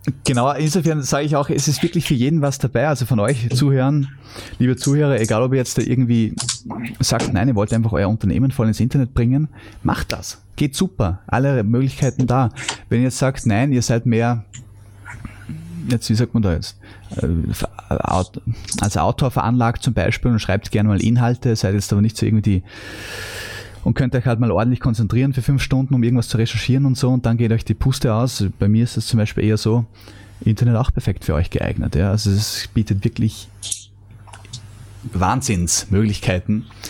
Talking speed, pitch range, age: 185 wpm, 100-125 Hz, 20-39